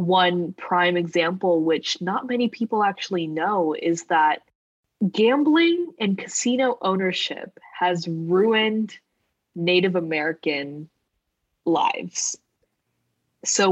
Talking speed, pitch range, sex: 90 wpm, 160-210 Hz, female